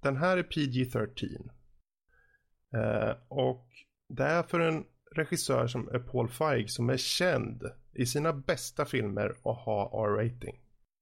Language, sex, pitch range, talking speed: Swedish, male, 120-150 Hz, 135 wpm